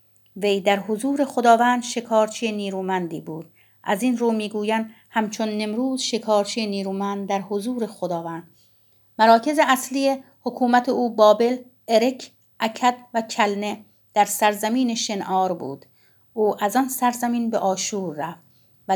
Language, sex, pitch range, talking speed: Persian, female, 190-230 Hz, 125 wpm